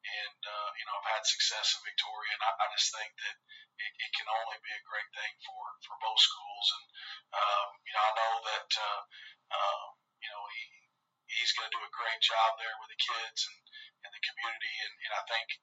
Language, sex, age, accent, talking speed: English, male, 40-59, American, 225 wpm